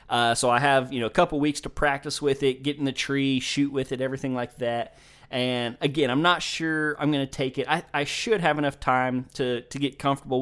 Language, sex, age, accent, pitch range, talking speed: English, male, 20-39, American, 125-140 Hz, 250 wpm